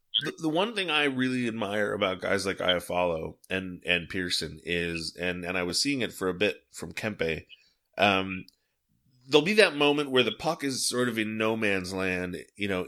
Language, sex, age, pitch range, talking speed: English, male, 30-49, 90-115 Hz, 195 wpm